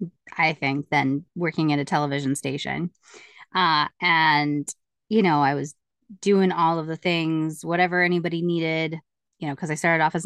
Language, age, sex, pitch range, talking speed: English, 20-39, female, 165-200 Hz, 170 wpm